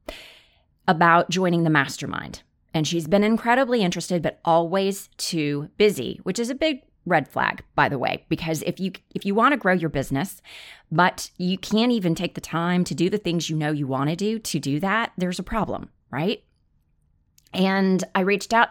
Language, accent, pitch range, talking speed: English, American, 155-200 Hz, 190 wpm